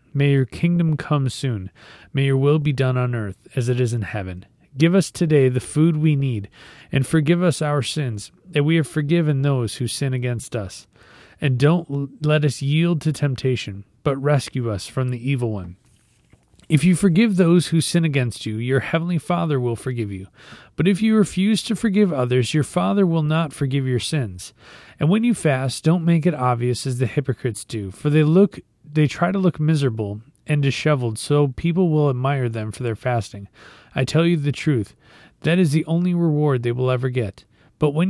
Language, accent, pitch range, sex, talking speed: English, American, 115-155 Hz, male, 200 wpm